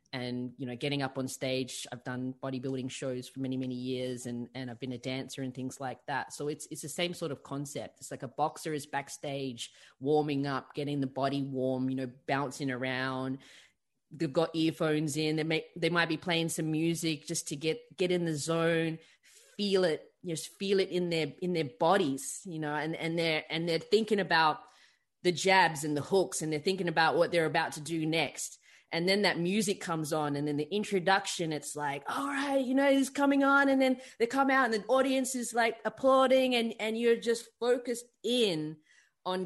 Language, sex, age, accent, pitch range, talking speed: English, female, 20-39, Australian, 140-190 Hz, 215 wpm